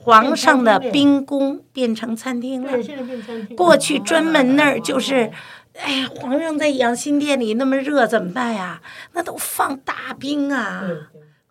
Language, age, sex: Chinese, 50-69, female